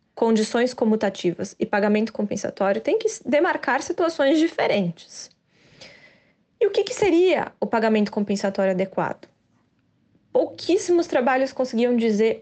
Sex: female